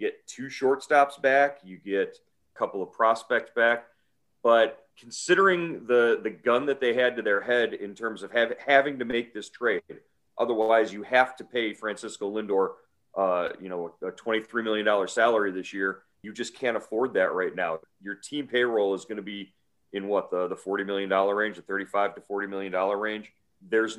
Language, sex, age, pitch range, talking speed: English, male, 40-59, 105-135 Hz, 195 wpm